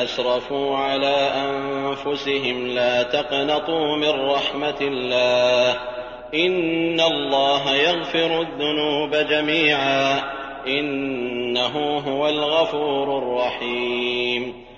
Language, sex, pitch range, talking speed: Arabic, male, 130-160 Hz, 70 wpm